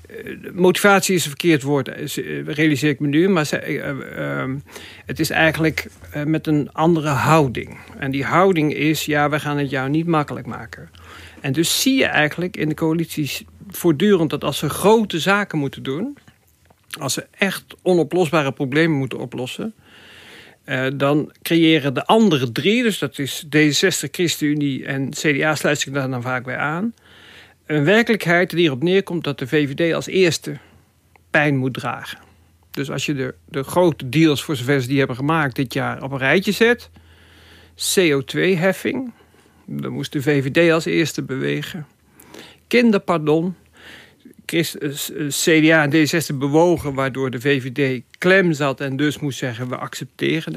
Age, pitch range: 50-69, 135-170 Hz